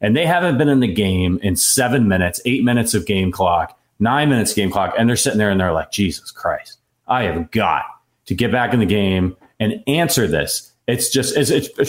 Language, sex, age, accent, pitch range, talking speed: English, male, 30-49, American, 105-140 Hz, 225 wpm